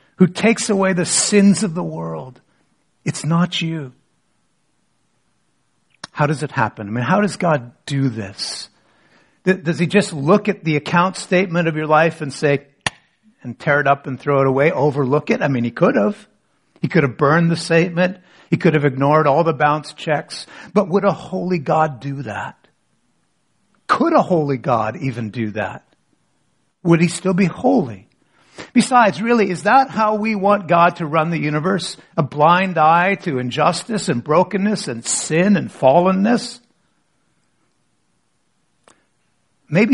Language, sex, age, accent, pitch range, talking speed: English, male, 60-79, American, 140-195 Hz, 160 wpm